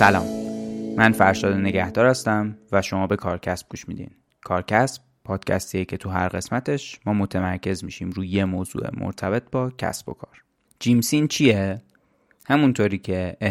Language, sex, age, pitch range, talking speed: Persian, male, 20-39, 95-110 Hz, 140 wpm